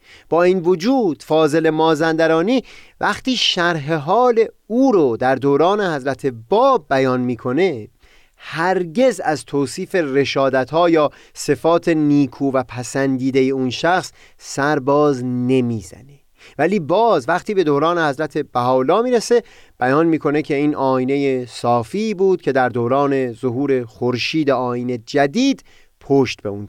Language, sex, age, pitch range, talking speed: Persian, male, 30-49, 125-170 Hz, 130 wpm